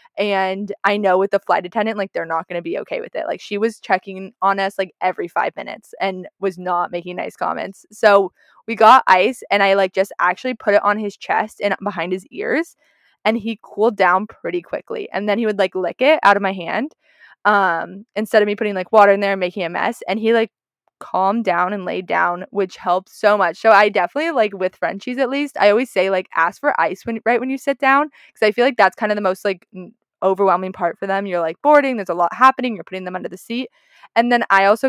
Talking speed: 245 wpm